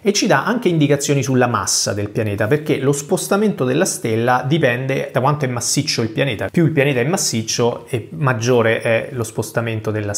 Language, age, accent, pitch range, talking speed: Italian, 30-49, native, 110-140 Hz, 190 wpm